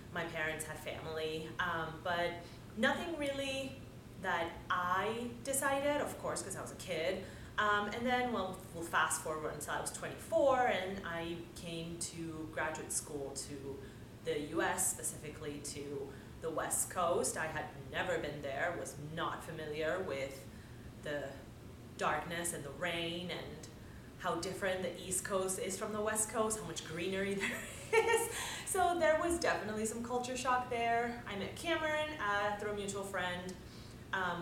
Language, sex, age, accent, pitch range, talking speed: English, female, 30-49, American, 155-215 Hz, 155 wpm